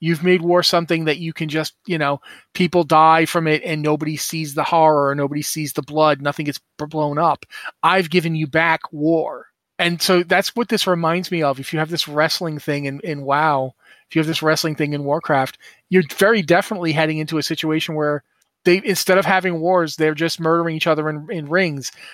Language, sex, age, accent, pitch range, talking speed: English, male, 30-49, American, 145-170 Hz, 215 wpm